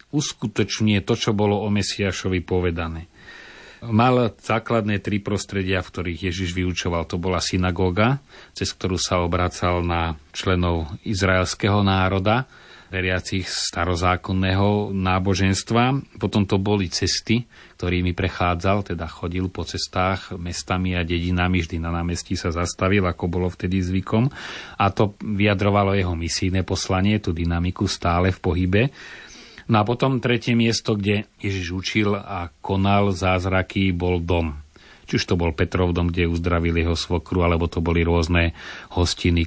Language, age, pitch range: Slovak, 30-49, 85-100 Hz